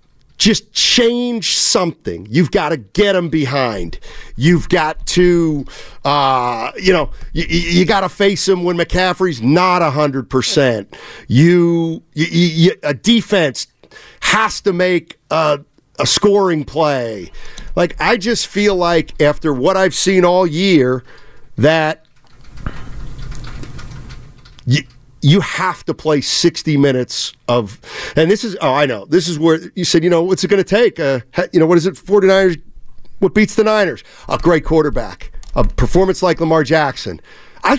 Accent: American